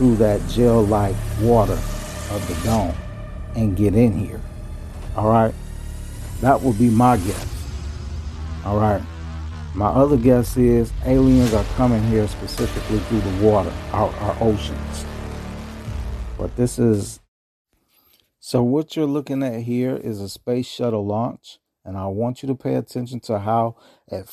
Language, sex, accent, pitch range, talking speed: English, male, American, 95-125 Hz, 145 wpm